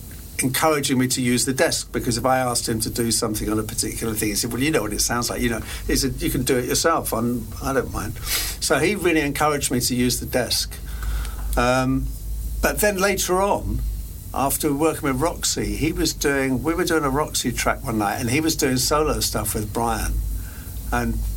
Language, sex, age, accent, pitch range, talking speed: Finnish, male, 60-79, British, 105-155 Hz, 220 wpm